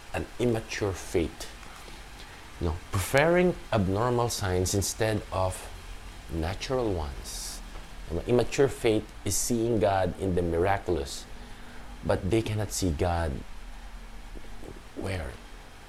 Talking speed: 105 wpm